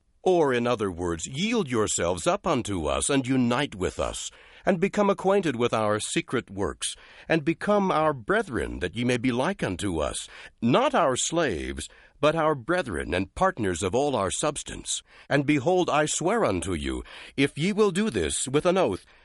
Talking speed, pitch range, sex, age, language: 180 wpm, 100-145 Hz, male, 60-79, English